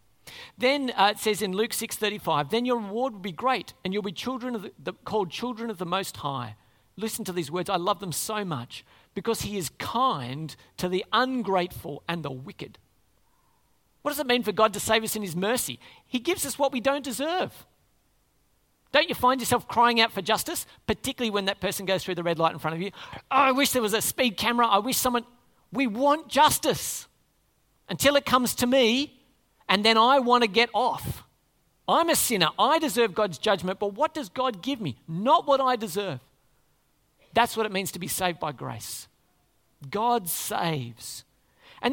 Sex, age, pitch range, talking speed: male, 50-69, 175-250 Hz, 195 wpm